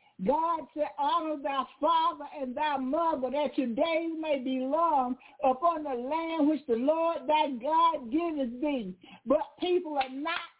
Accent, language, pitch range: American, English, 260-320 Hz